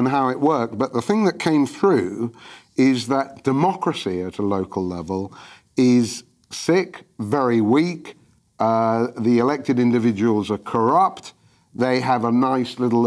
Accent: British